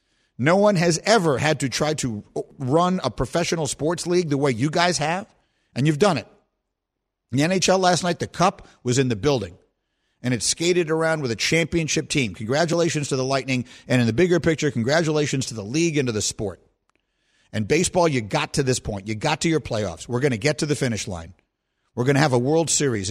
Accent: American